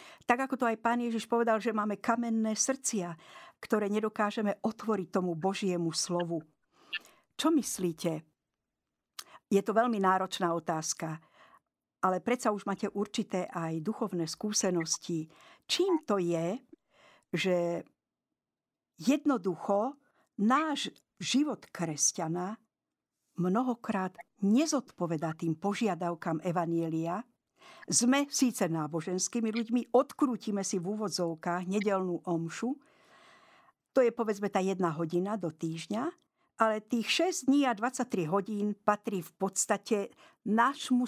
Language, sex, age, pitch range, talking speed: Slovak, female, 60-79, 175-235 Hz, 110 wpm